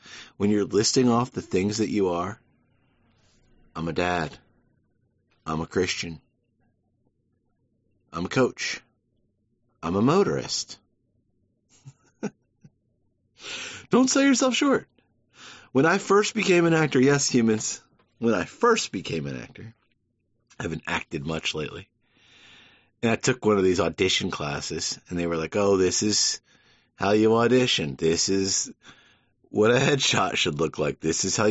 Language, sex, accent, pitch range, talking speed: English, male, American, 100-130 Hz, 140 wpm